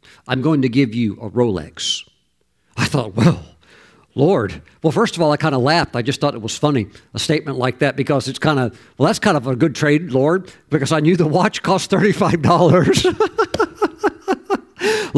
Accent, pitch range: American, 115-165 Hz